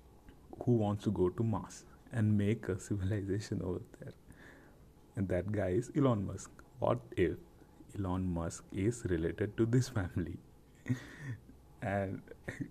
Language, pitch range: English, 90-115 Hz